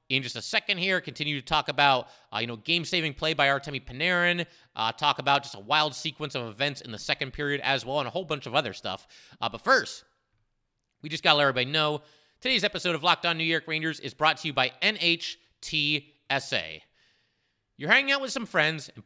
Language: English